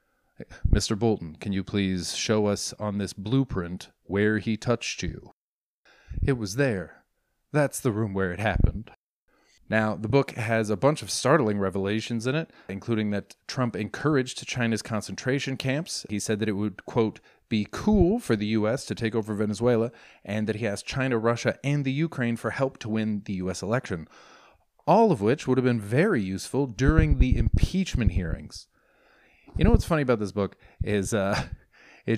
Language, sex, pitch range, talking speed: English, male, 100-125 Hz, 175 wpm